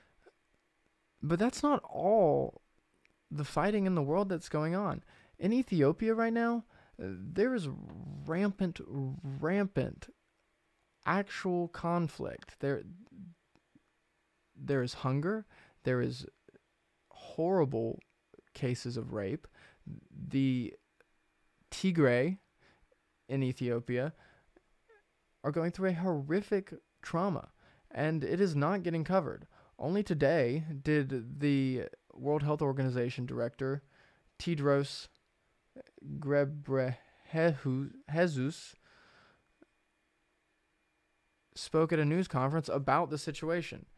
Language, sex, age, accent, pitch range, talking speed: English, male, 20-39, American, 135-190 Hz, 90 wpm